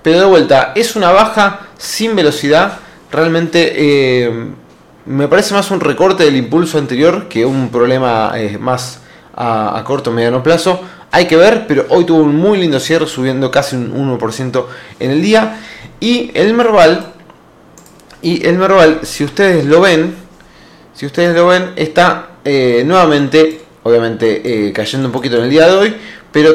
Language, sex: Spanish, male